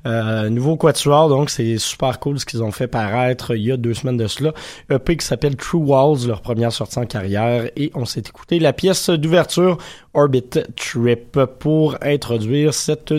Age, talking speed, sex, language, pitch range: 20-39, 190 wpm, male, French, 120-155 Hz